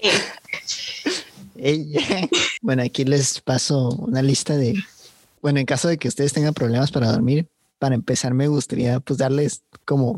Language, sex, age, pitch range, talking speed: English, male, 30-49, 125-150 Hz, 140 wpm